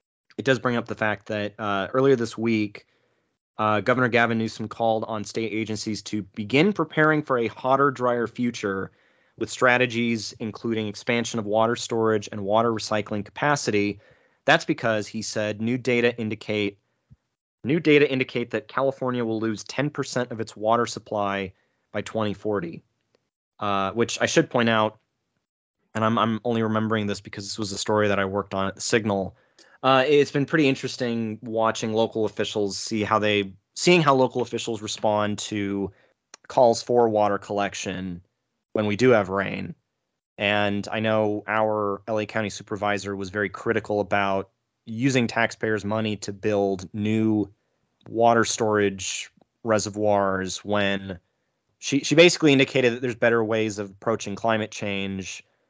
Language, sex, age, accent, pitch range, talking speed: English, male, 30-49, American, 105-120 Hz, 155 wpm